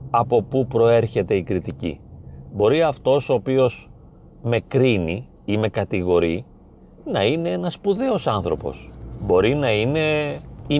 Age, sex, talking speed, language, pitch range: 40-59, male, 130 wpm, Greek, 110-150 Hz